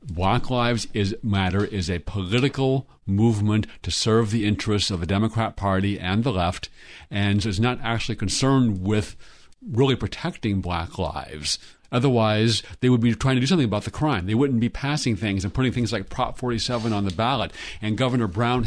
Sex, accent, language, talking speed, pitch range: male, American, English, 180 wpm, 100-125 Hz